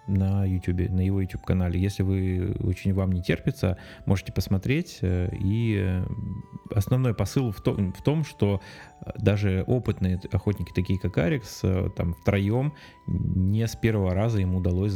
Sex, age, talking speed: male, 20-39, 145 wpm